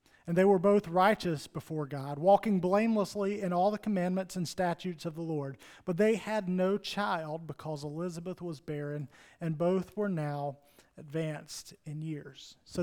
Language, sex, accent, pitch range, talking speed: English, male, American, 150-200 Hz, 165 wpm